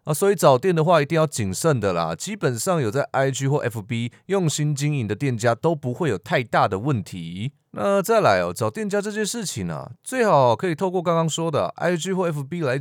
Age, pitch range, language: 30-49, 125-160 Hz, Chinese